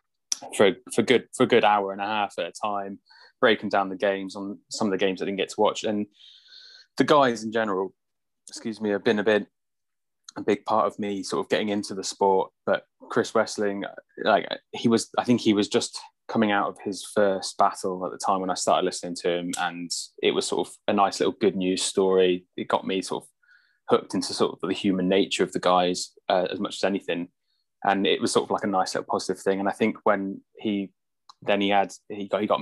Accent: British